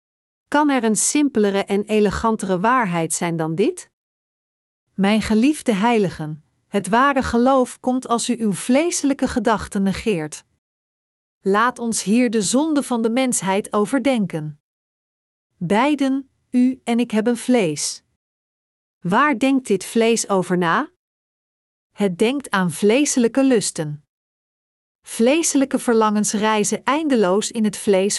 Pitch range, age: 200-260 Hz, 40-59